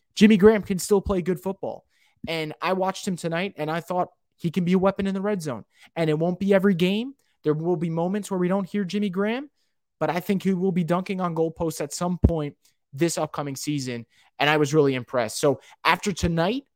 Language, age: English, 20-39